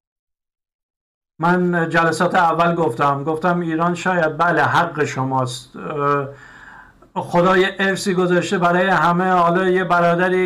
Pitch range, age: 140-180 Hz, 50-69